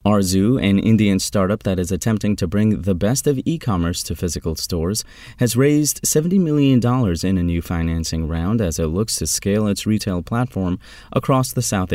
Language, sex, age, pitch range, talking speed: English, male, 30-49, 85-110 Hz, 180 wpm